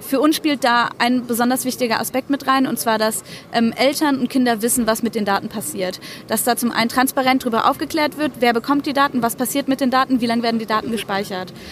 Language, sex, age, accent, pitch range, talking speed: German, female, 20-39, German, 210-250 Hz, 235 wpm